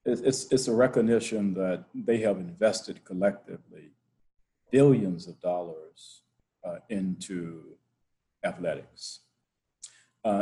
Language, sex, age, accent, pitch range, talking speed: English, male, 50-69, American, 95-125 Hz, 90 wpm